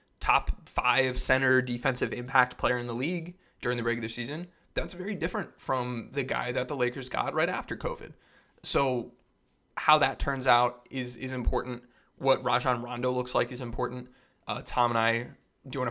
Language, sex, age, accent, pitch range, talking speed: English, male, 20-39, American, 120-160 Hz, 175 wpm